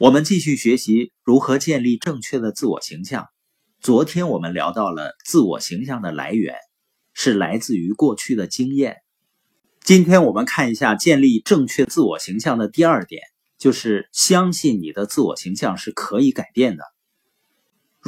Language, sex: Chinese, male